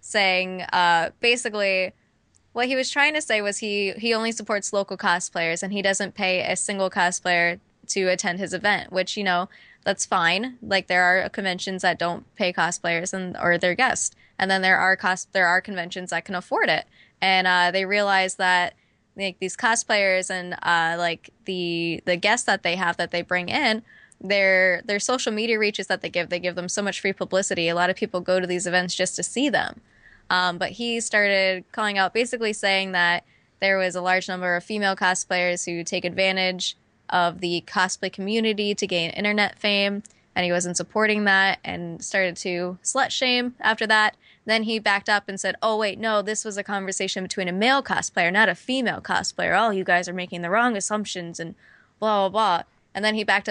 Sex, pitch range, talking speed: female, 180-210 Hz, 205 wpm